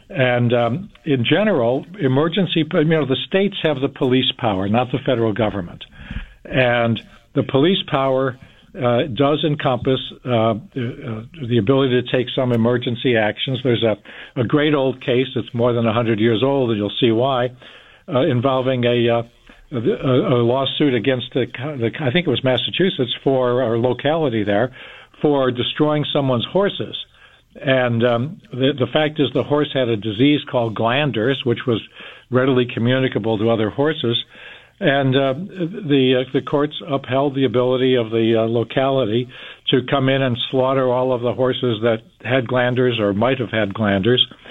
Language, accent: English, American